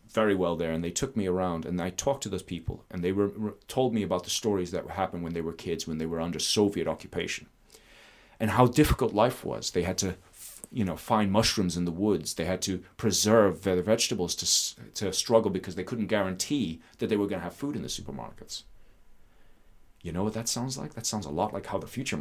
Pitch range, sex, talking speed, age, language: 90-115 Hz, male, 230 wpm, 30-49, English